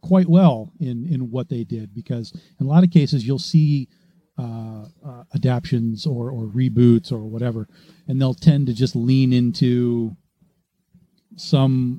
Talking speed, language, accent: 155 wpm, English, American